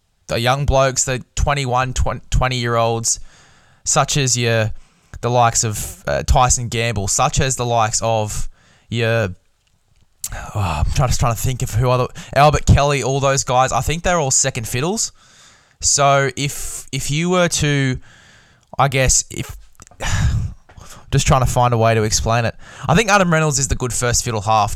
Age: 20-39